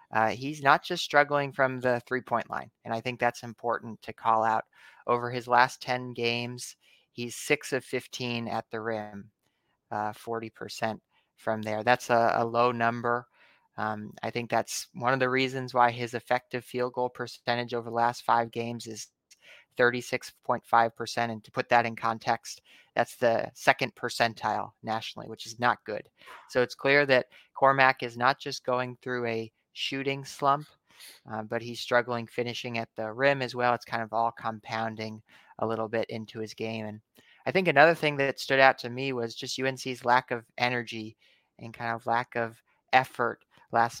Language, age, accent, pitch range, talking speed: English, 30-49, American, 115-125 Hz, 180 wpm